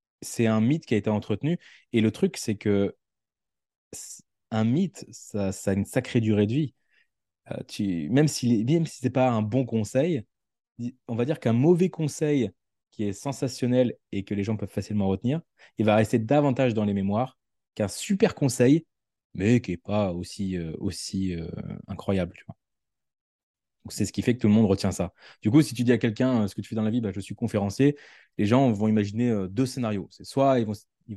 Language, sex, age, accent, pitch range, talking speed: French, male, 20-39, French, 95-125 Hz, 215 wpm